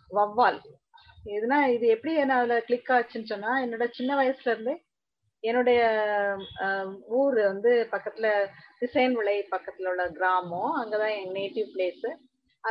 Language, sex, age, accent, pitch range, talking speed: English, female, 30-49, Indian, 200-250 Hz, 65 wpm